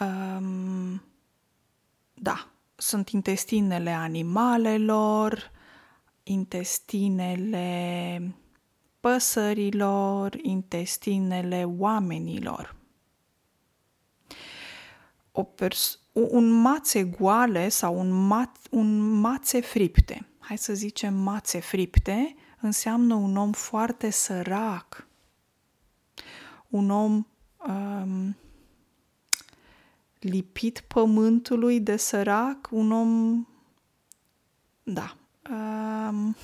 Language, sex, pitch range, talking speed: Romanian, female, 195-230 Hz, 60 wpm